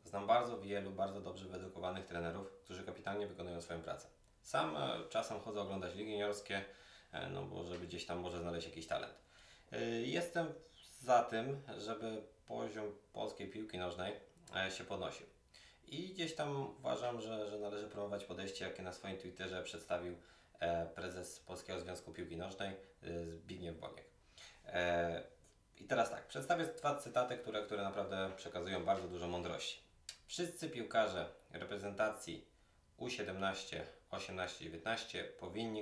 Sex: male